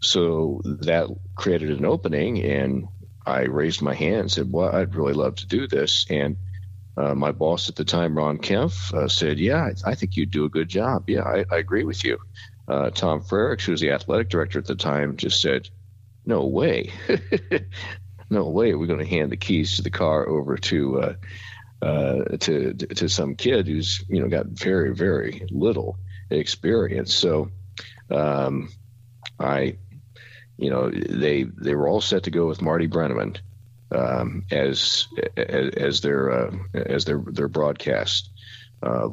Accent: American